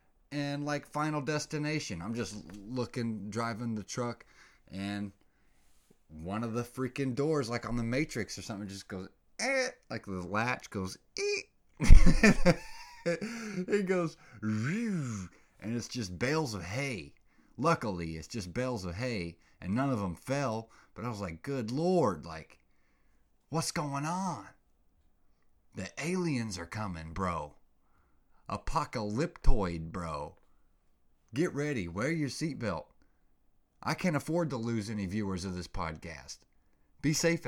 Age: 30-49